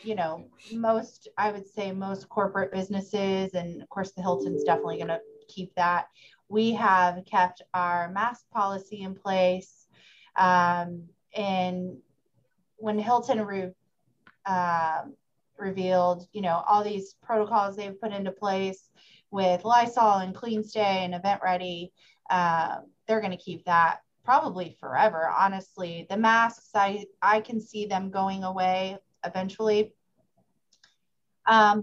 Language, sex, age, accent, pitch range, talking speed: English, female, 30-49, American, 180-215 Hz, 130 wpm